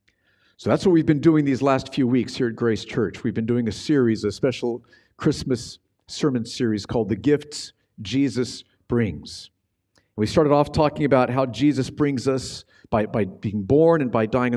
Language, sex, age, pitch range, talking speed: English, male, 50-69, 115-150 Hz, 185 wpm